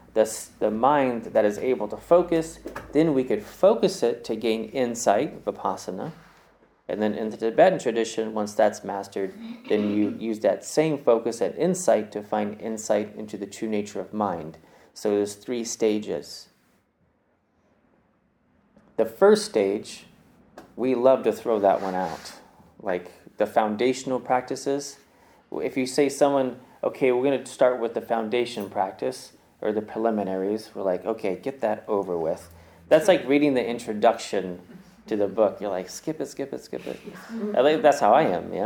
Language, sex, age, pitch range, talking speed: English, male, 30-49, 105-130 Hz, 160 wpm